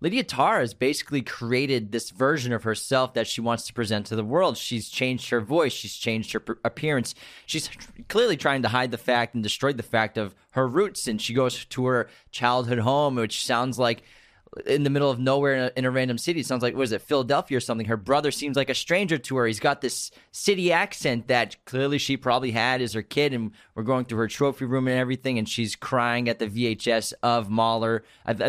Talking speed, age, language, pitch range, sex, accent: 230 wpm, 20-39, English, 115-140 Hz, male, American